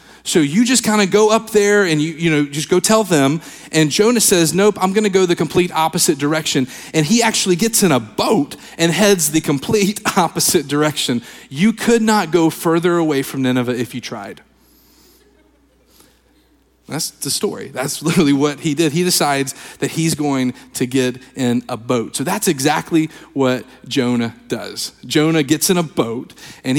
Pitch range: 130-170 Hz